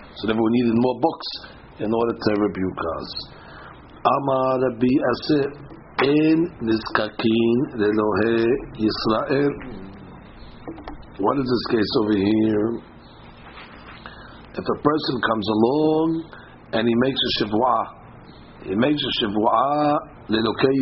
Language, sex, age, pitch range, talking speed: English, male, 60-79, 110-145 Hz, 90 wpm